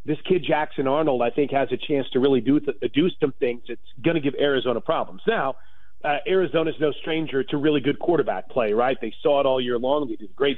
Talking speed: 250 wpm